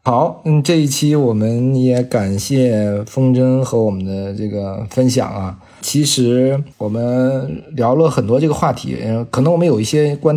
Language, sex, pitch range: Chinese, male, 110-135 Hz